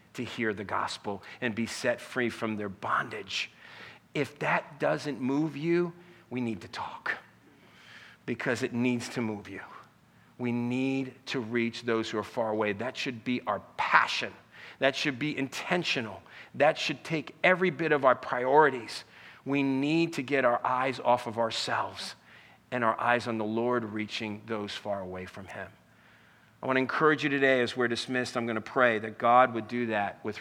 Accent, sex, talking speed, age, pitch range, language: American, male, 180 wpm, 50-69, 115-145 Hz, English